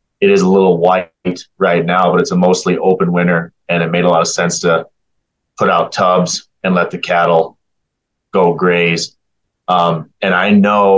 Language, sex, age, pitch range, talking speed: English, male, 30-49, 85-95 Hz, 185 wpm